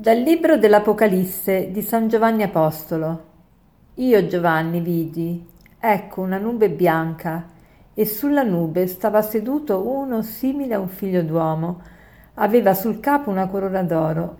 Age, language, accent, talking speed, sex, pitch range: 50-69, Italian, native, 130 wpm, female, 165-200 Hz